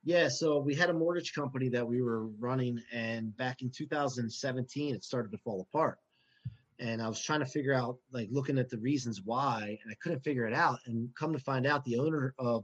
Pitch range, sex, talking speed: 120-145 Hz, male, 225 wpm